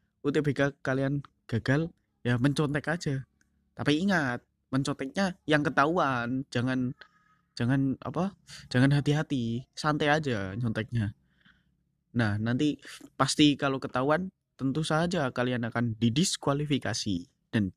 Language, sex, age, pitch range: Indonesian, male, 20-39, 110-145 Hz